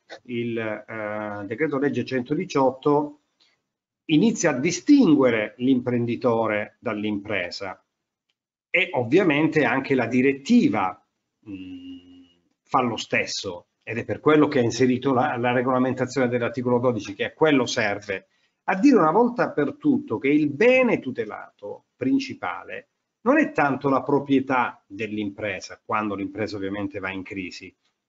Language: Italian